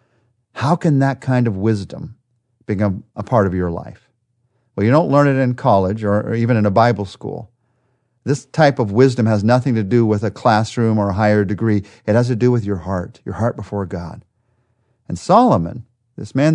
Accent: American